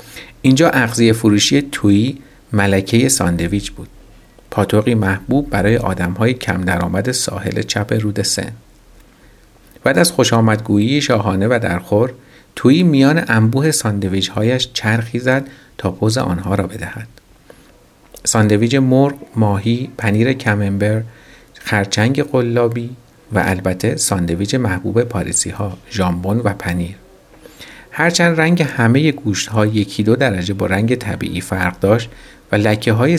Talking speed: 120 wpm